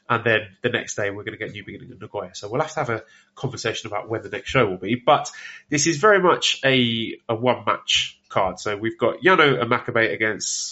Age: 20-39